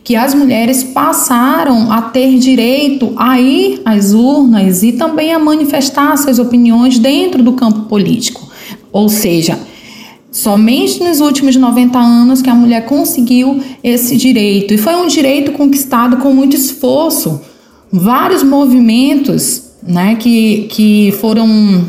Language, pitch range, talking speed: Portuguese, 220-280 Hz, 130 wpm